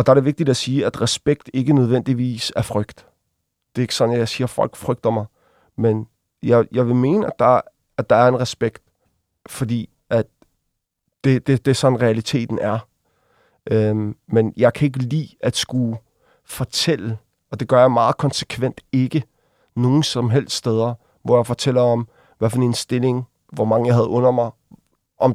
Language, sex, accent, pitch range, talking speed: Danish, male, native, 115-130 Hz, 190 wpm